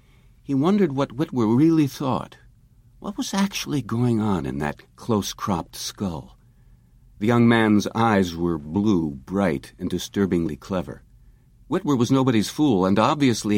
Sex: male